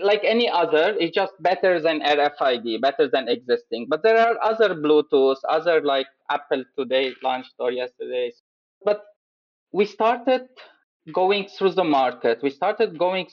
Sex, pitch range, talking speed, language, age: male, 145-210 Hz, 150 wpm, English, 20-39